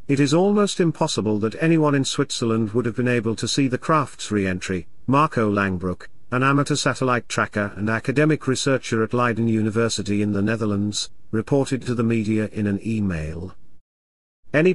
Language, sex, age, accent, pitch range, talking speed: English, male, 40-59, British, 105-140 Hz, 165 wpm